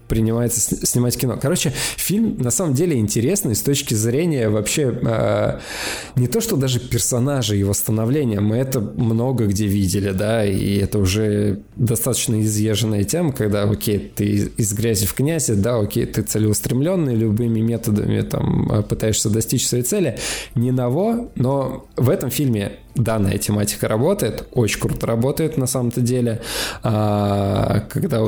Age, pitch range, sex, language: 20-39, 105-125 Hz, male, Russian